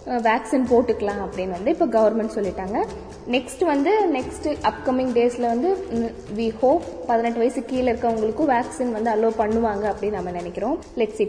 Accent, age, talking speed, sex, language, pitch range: native, 20-39, 145 wpm, female, Tamil, 220-260 Hz